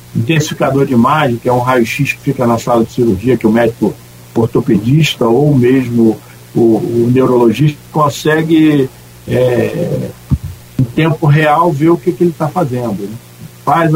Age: 50-69